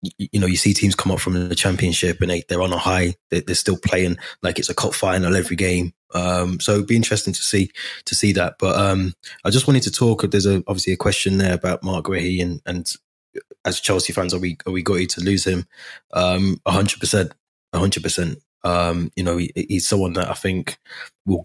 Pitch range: 90-95 Hz